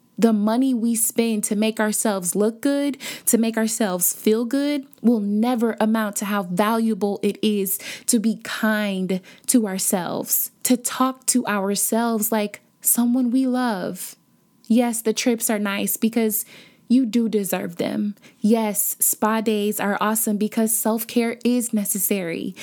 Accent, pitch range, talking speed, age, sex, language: American, 205-245 Hz, 145 wpm, 20-39, female, English